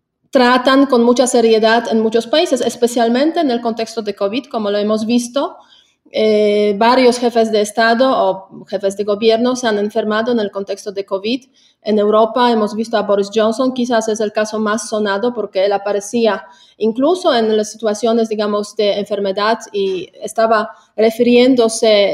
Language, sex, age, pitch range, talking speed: Spanish, female, 30-49, 205-245 Hz, 165 wpm